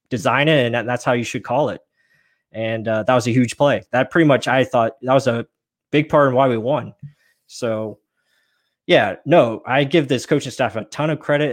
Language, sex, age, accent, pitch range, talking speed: English, male, 20-39, American, 120-145 Hz, 220 wpm